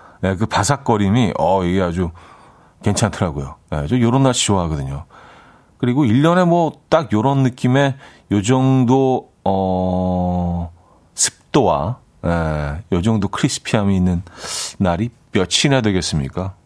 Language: Korean